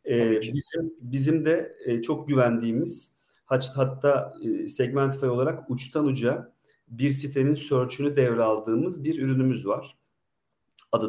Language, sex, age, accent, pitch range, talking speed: Turkish, male, 40-59, native, 115-145 Hz, 115 wpm